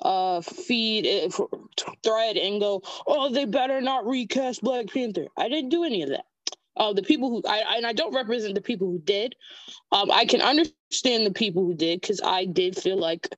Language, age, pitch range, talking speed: English, 20-39, 190-260 Hz, 200 wpm